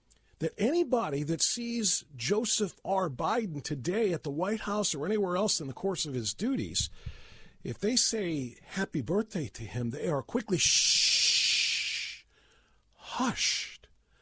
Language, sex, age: English, male, 50-69